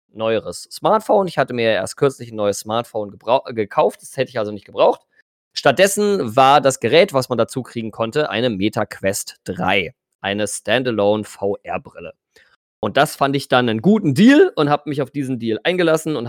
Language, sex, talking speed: German, male, 185 wpm